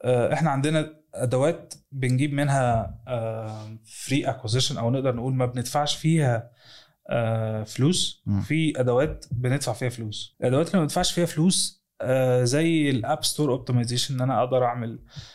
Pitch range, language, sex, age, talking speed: 120-140 Hz, Arabic, male, 20-39, 130 wpm